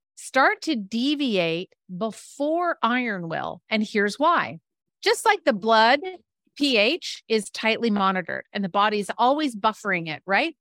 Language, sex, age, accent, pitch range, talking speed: English, female, 40-59, American, 200-275 Hz, 135 wpm